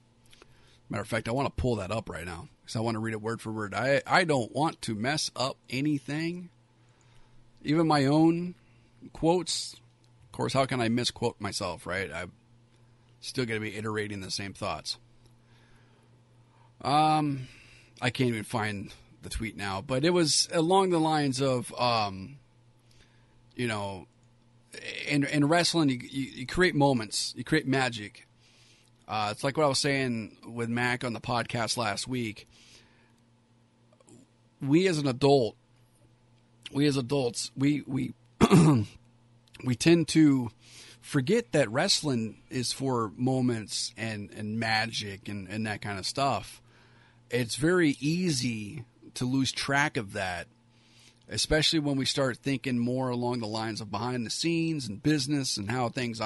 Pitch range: 115-135 Hz